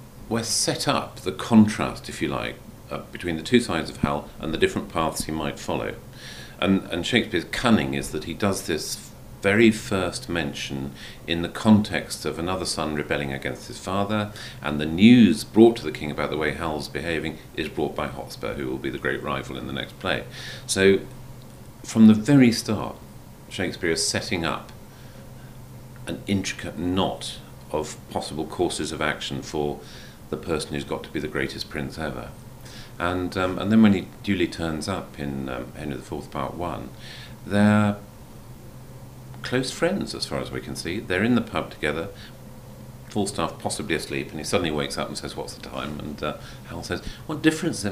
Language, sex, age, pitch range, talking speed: English, male, 40-59, 75-125 Hz, 185 wpm